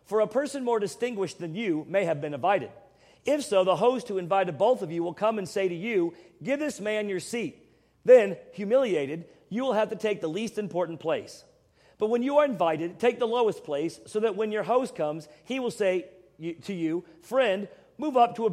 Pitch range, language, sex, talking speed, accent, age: 170-230 Hz, English, male, 215 wpm, American, 40-59